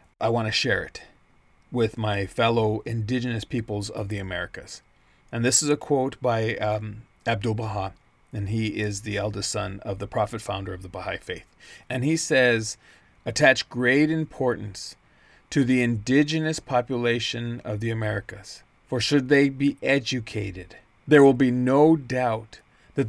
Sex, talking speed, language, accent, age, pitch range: male, 155 wpm, English, American, 40-59, 110-140 Hz